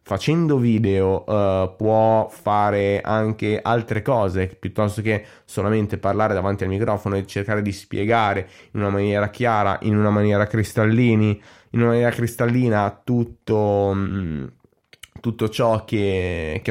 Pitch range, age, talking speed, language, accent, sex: 100-120 Hz, 20-39, 120 wpm, Italian, native, male